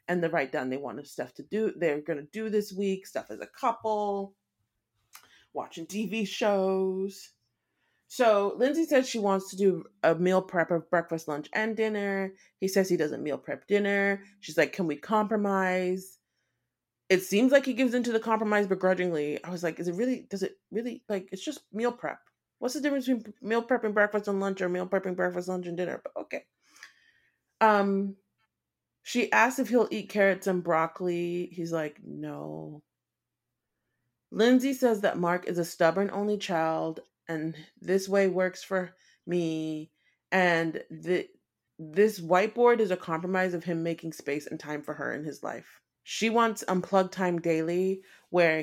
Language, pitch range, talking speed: English, 165-205 Hz, 175 wpm